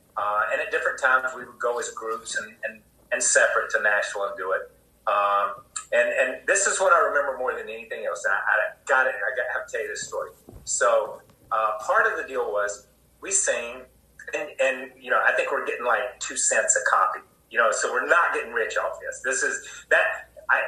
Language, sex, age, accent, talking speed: English, male, 30-49, American, 230 wpm